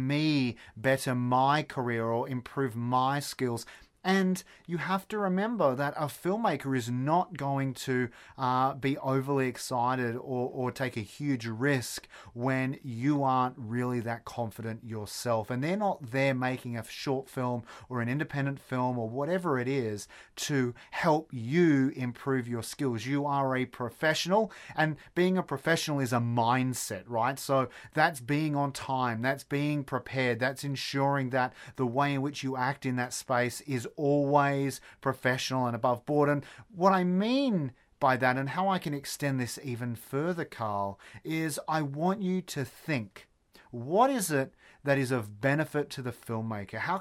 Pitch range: 125-155 Hz